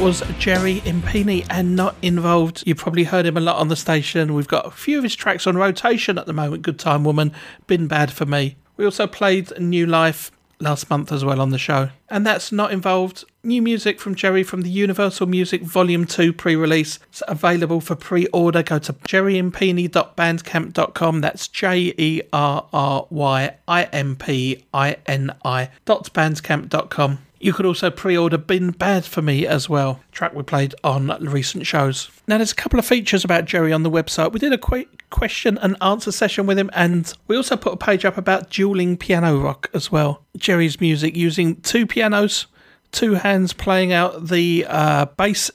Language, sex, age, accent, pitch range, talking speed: English, male, 40-59, British, 150-190 Hz, 175 wpm